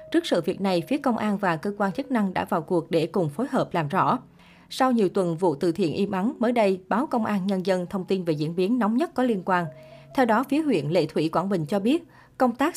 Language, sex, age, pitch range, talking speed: Vietnamese, female, 20-39, 175-235 Hz, 275 wpm